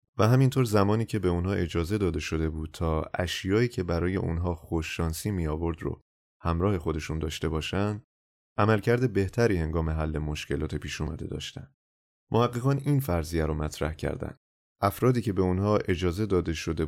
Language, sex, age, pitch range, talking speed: Persian, male, 30-49, 80-105 Hz, 160 wpm